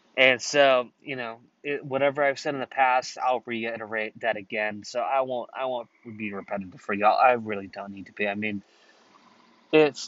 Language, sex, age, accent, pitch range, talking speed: English, male, 20-39, American, 110-135 Hz, 195 wpm